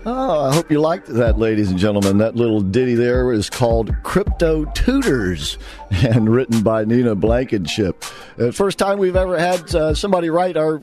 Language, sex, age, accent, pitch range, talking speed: English, male, 50-69, American, 105-130 Hz, 170 wpm